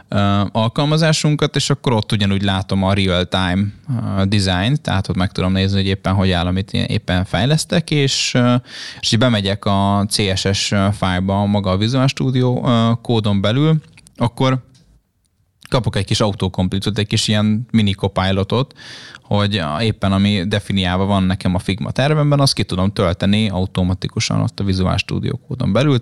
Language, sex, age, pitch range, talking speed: Hungarian, male, 20-39, 95-125 Hz, 145 wpm